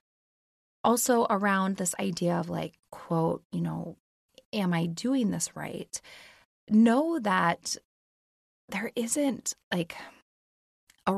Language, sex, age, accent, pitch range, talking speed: English, female, 20-39, American, 175-230 Hz, 105 wpm